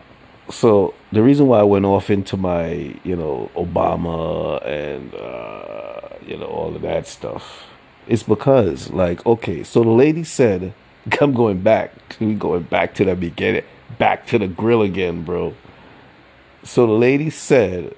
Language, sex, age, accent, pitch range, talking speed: English, male, 30-49, American, 90-115 Hz, 155 wpm